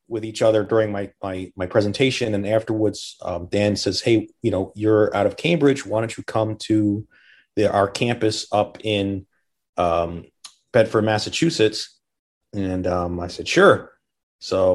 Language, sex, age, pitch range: English, male, 30-49, 95-115 Hz